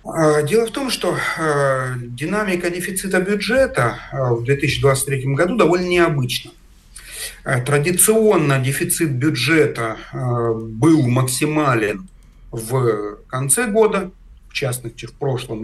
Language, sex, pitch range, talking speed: Russian, male, 130-160 Hz, 90 wpm